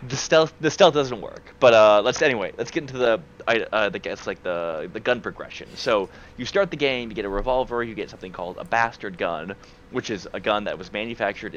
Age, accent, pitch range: 20-39, American, 95-120 Hz